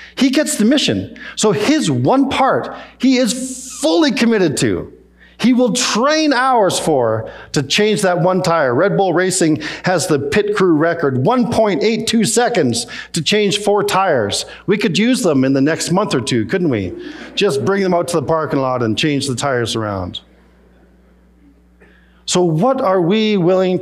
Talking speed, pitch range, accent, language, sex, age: 170 wpm, 125-200 Hz, American, English, male, 50-69